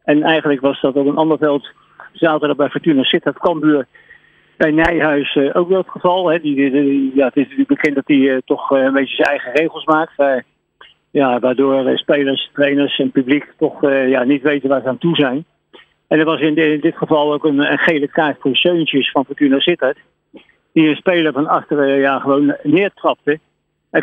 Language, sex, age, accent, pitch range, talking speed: Dutch, male, 50-69, Dutch, 135-160 Hz, 170 wpm